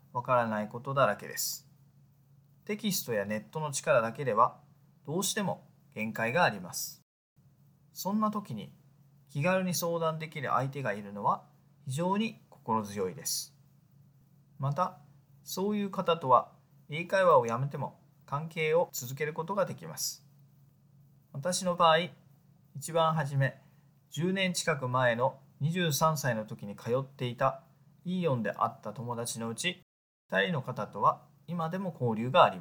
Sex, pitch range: male, 140-165 Hz